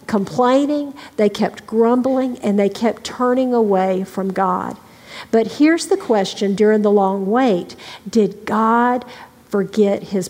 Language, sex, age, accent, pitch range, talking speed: English, female, 50-69, American, 200-255 Hz, 135 wpm